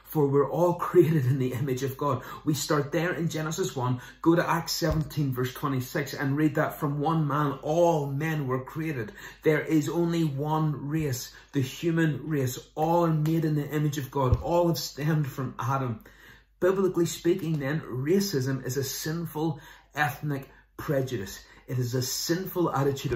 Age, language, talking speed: 30-49, English, 170 wpm